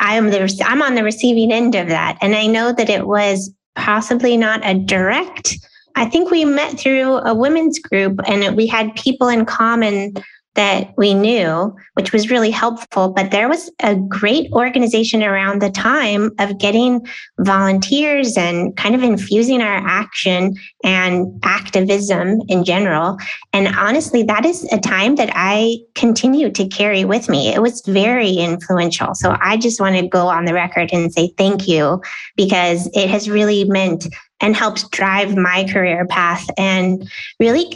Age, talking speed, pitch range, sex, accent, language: 30-49, 165 wpm, 195-230 Hz, female, American, English